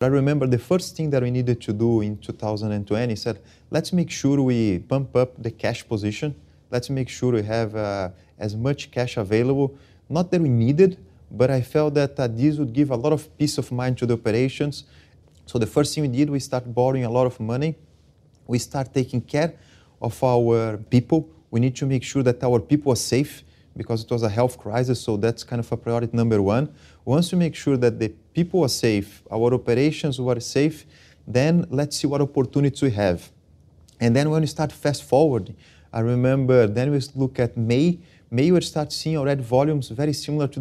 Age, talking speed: 30-49, 205 wpm